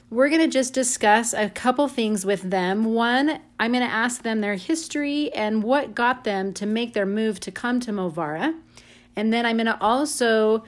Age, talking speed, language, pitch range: 30-49, 200 wpm, English, 190-225 Hz